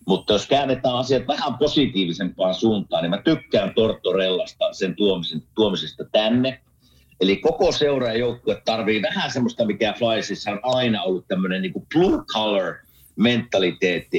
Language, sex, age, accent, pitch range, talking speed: Finnish, male, 50-69, native, 95-125 Hz, 130 wpm